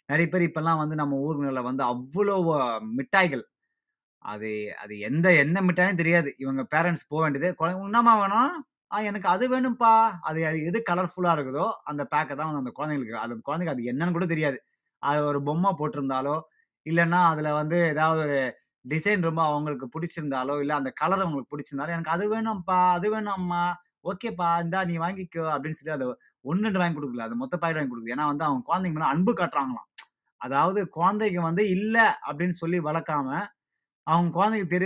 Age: 20-39